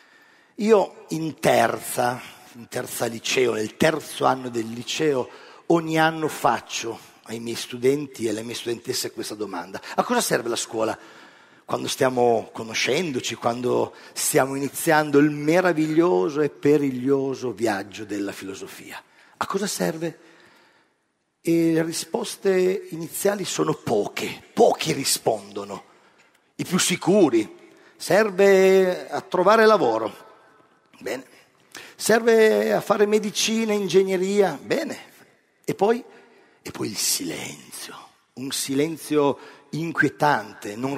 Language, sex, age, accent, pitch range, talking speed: Italian, male, 40-59, native, 125-195 Hz, 110 wpm